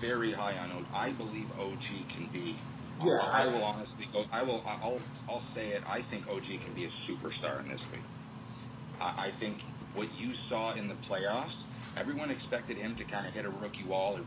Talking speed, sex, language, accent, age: 205 wpm, male, English, American, 40-59